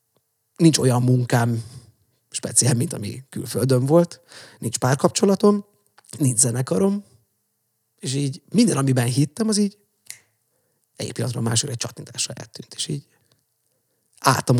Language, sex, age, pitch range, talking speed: Hungarian, male, 30-49, 115-135 Hz, 115 wpm